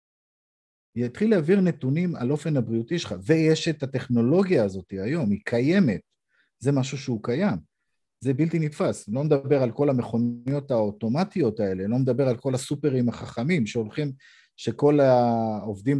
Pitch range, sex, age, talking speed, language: 115-155 Hz, male, 50-69, 140 wpm, Hebrew